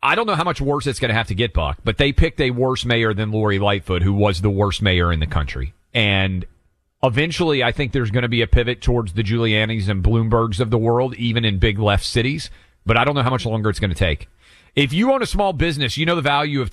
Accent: American